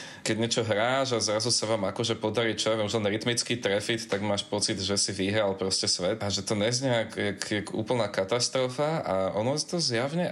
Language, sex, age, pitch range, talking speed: Slovak, male, 20-39, 105-130 Hz, 205 wpm